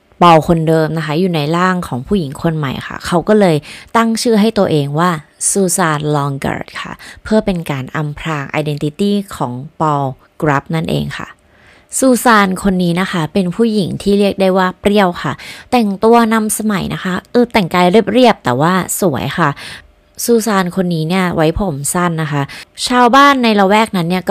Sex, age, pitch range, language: female, 20-39, 150-200 Hz, Thai